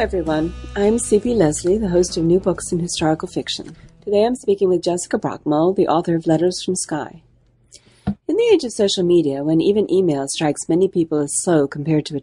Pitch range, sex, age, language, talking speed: 150-195 Hz, female, 40-59, English, 205 wpm